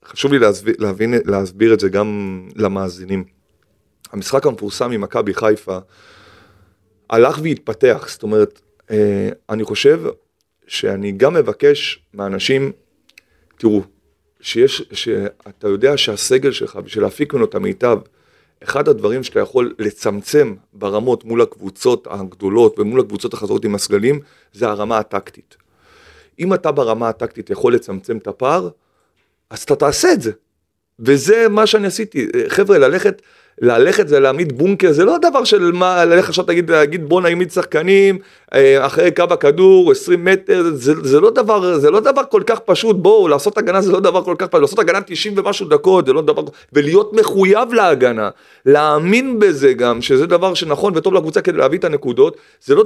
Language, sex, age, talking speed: Hebrew, male, 30-49, 150 wpm